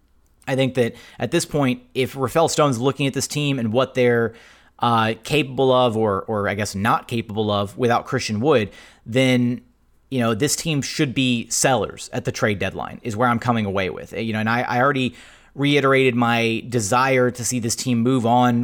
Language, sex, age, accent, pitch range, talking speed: English, male, 30-49, American, 110-125 Hz, 200 wpm